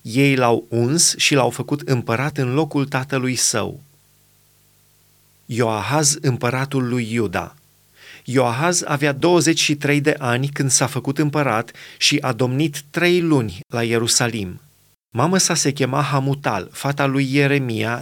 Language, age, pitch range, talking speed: Romanian, 30-49, 120-145 Hz, 130 wpm